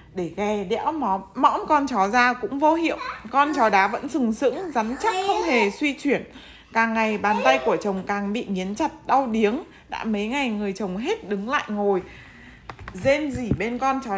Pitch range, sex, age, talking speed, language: 200-270 Hz, female, 20-39, 205 wpm, Vietnamese